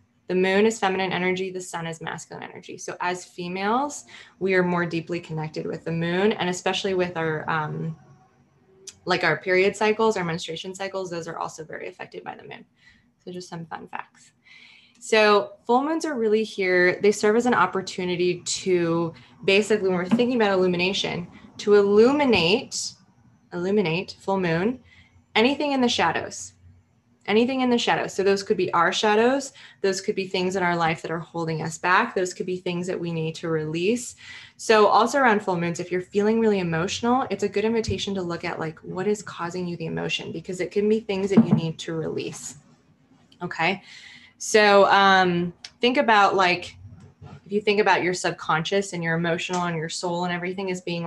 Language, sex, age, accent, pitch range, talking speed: English, female, 20-39, American, 170-205 Hz, 190 wpm